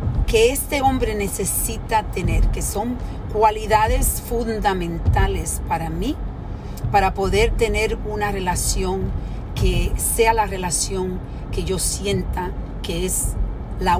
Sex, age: female, 40-59